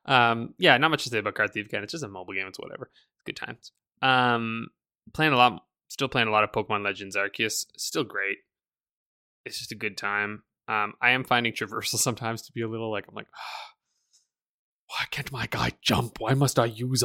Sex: male